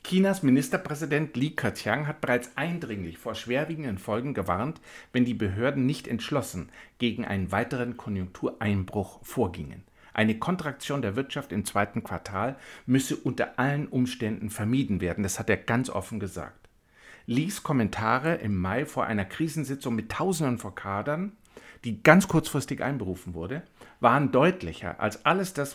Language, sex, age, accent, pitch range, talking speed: German, male, 50-69, German, 105-140 Hz, 140 wpm